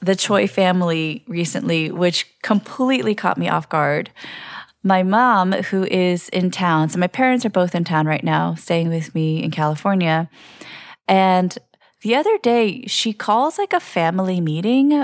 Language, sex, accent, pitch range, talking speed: English, female, American, 165-215 Hz, 160 wpm